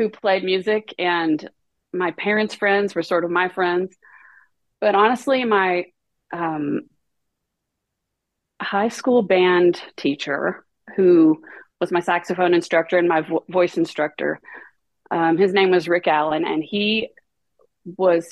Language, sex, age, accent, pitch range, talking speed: English, female, 30-49, American, 165-195 Hz, 120 wpm